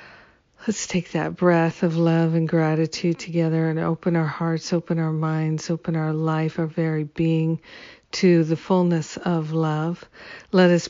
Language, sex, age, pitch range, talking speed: English, female, 50-69, 165-180 Hz, 160 wpm